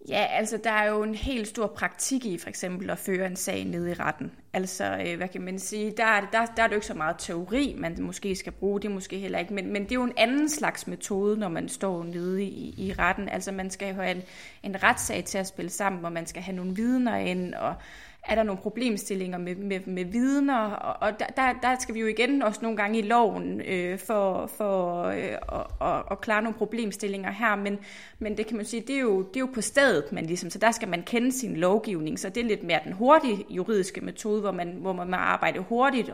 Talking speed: 240 wpm